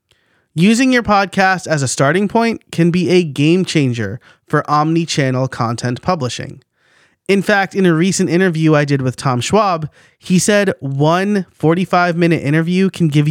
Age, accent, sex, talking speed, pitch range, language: 30-49, American, male, 155 wpm, 135-185 Hz, English